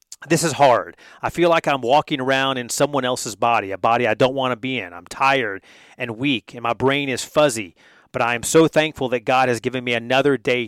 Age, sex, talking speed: 30-49, male, 235 wpm